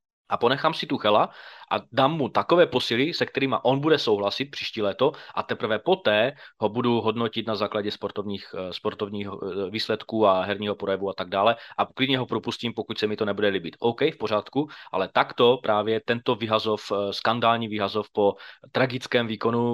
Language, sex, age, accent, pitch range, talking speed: Czech, male, 20-39, native, 100-120 Hz, 175 wpm